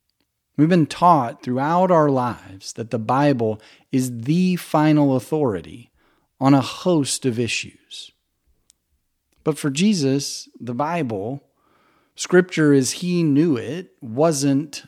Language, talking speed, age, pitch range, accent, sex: English, 115 wpm, 40-59, 120-150 Hz, American, male